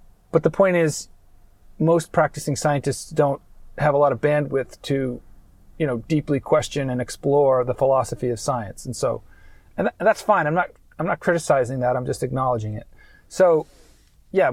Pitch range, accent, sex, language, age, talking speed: 125-155 Hz, American, male, English, 40-59, 170 wpm